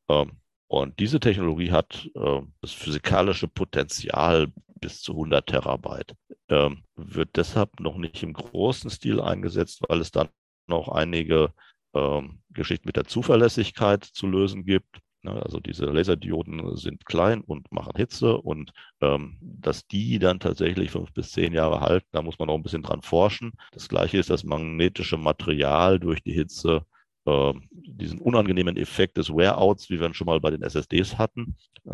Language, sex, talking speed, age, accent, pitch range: German, male, 150 wpm, 50-69, German, 75-95 Hz